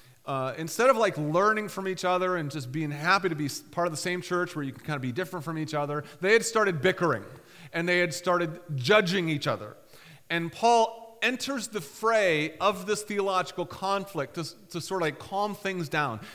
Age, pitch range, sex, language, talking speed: 30-49, 160-215 Hz, male, English, 210 wpm